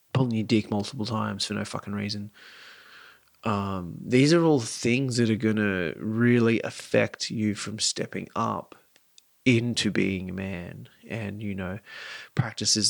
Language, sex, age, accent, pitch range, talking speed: English, male, 30-49, Australian, 110-125 Hz, 150 wpm